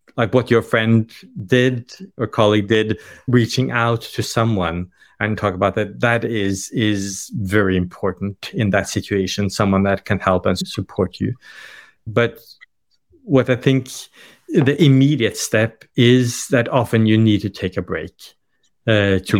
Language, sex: English, male